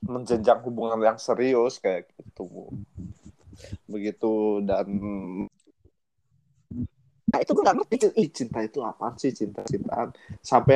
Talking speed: 105 wpm